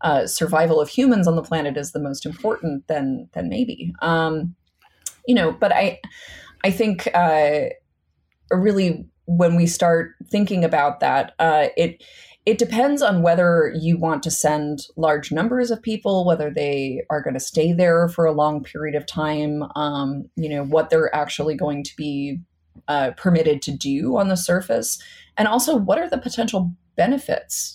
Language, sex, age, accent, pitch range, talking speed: English, female, 30-49, American, 150-220 Hz, 170 wpm